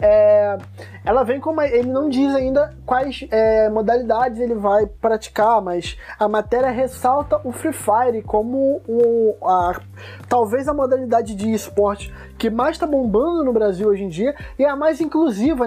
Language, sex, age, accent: Portuguese, male, 20-39, Brazilian